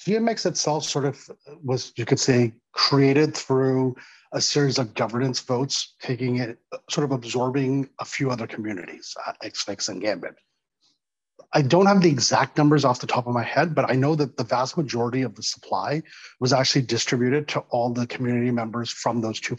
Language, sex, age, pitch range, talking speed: English, male, 40-59, 120-150 Hz, 185 wpm